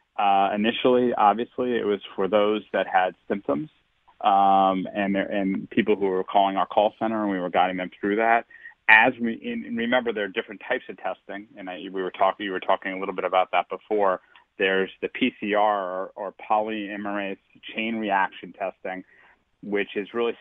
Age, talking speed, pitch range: 30-49, 190 wpm, 95-110 Hz